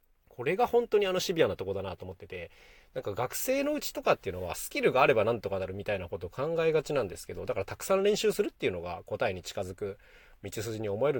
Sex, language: male, Japanese